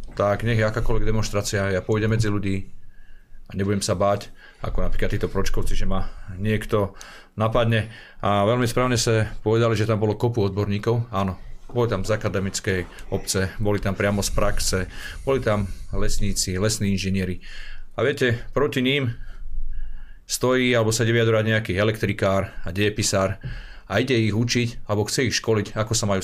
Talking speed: 160 wpm